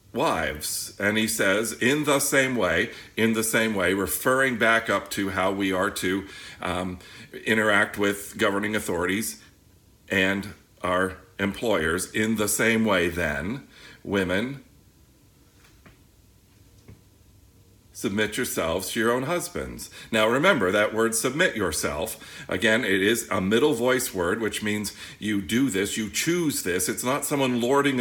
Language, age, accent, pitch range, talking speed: English, 50-69, American, 95-120 Hz, 140 wpm